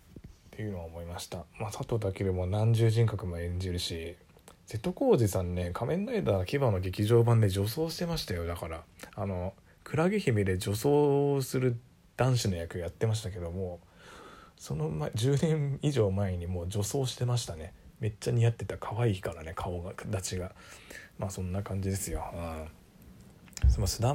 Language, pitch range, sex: Japanese, 90-120 Hz, male